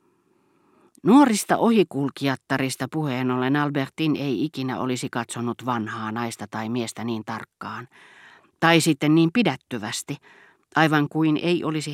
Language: Finnish